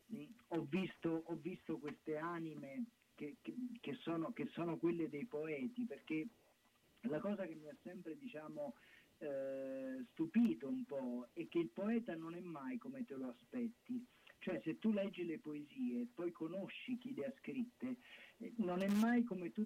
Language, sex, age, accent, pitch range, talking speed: Italian, male, 40-59, native, 160-240 Hz, 170 wpm